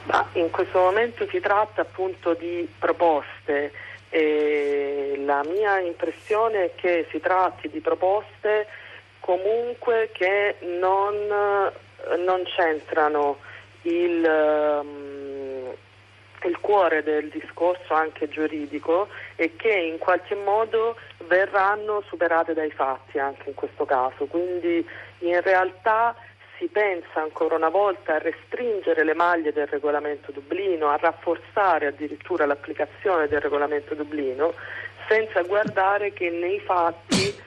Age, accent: 40-59, native